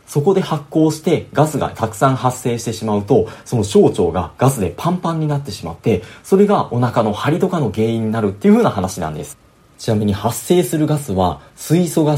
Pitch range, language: 100-160 Hz, Japanese